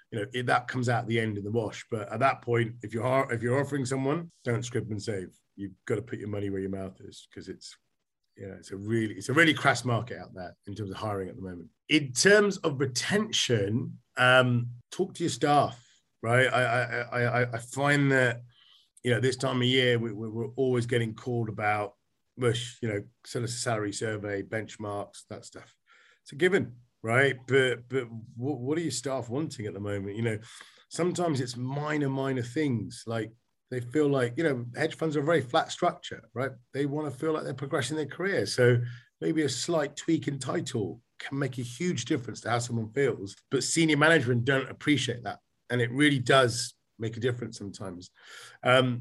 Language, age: English, 40-59